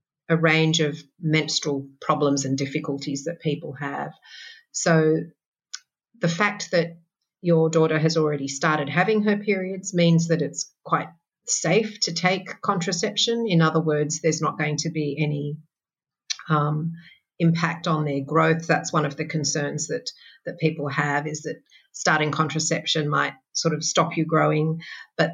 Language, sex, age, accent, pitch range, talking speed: English, female, 40-59, Australian, 150-170 Hz, 150 wpm